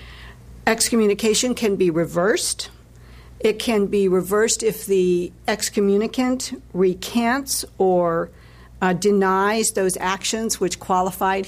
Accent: American